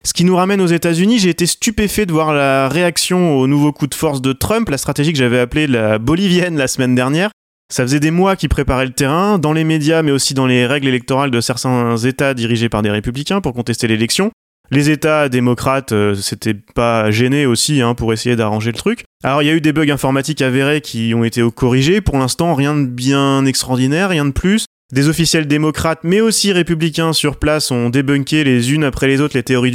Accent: French